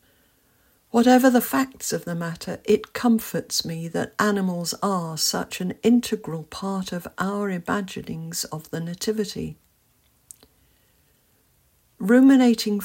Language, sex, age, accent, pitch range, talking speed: English, female, 60-79, British, 175-225 Hz, 105 wpm